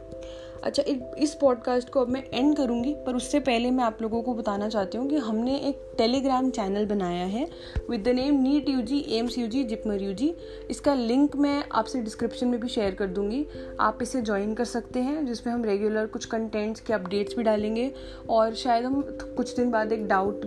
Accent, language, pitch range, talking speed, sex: native, Hindi, 210-255 Hz, 205 wpm, female